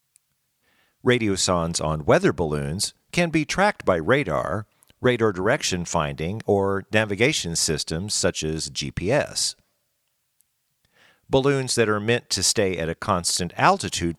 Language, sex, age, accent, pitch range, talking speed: English, male, 50-69, American, 85-120 Hz, 120 wpm